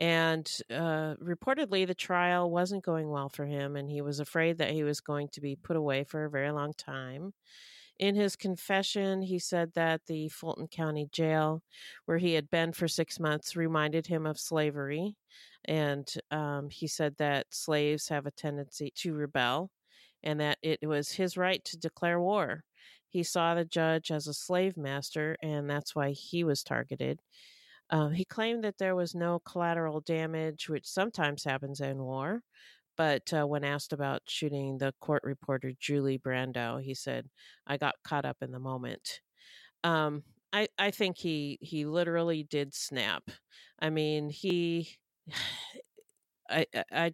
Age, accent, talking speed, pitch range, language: 40-59, American, 165 wpm, 145-170 Hz, English